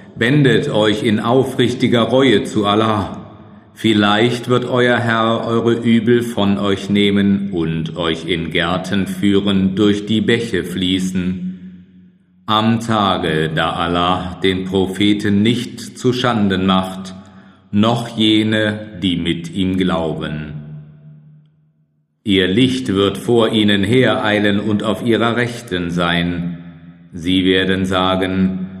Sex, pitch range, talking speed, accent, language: male, 95-115 Hz, 115 wpm, German, German